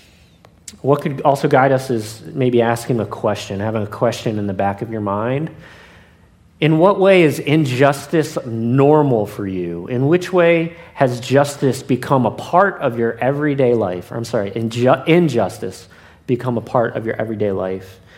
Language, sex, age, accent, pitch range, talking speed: English, male, 40-59, American, 100-135 Hz, 165 wpm